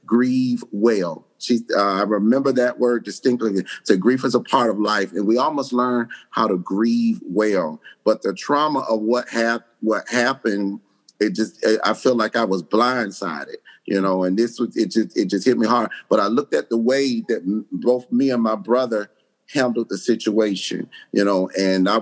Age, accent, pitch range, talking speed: 30-49, American, 105-125 Hz, 200 wpm